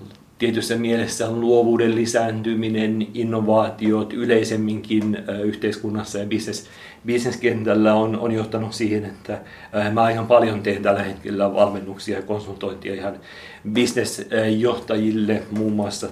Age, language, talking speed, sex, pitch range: 40-59, Finnish, 110 wpm, male, 100-115 Hz